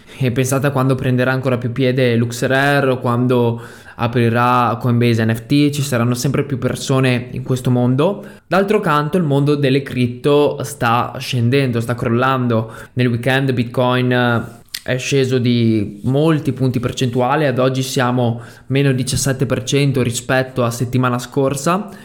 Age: 20-39